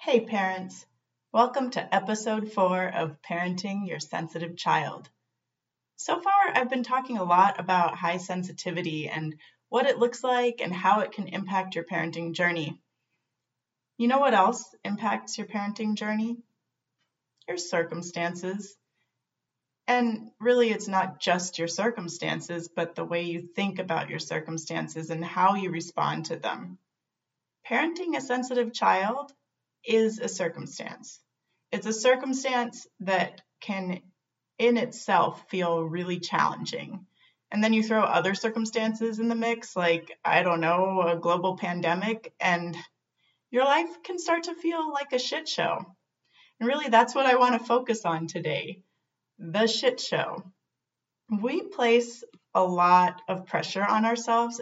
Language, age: English, 30-49